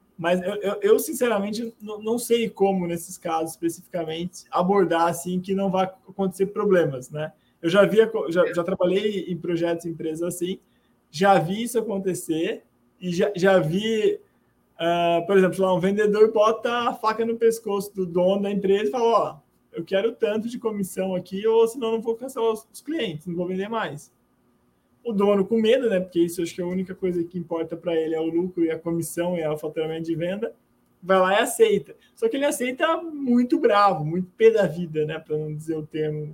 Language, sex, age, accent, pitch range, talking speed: Portuguese, male, 20-39, Brazilian, 170-225 Hz, 200 wpm